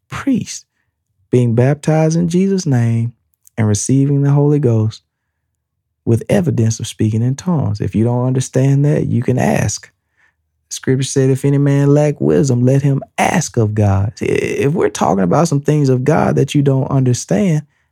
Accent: American